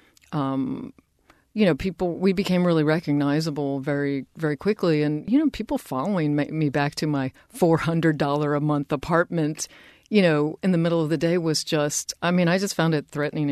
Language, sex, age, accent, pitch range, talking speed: English, female, 40-59, American, 145-185 Hz, 190 wpm